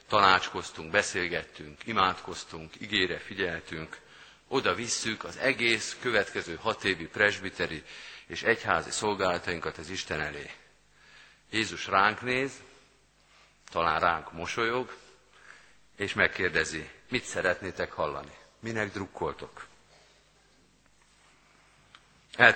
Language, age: Hungarian, 50-69